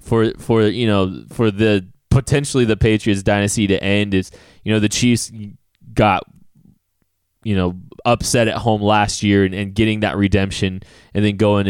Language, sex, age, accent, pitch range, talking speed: English, male, 20-39, American, 95-110 Hz, 170 wpm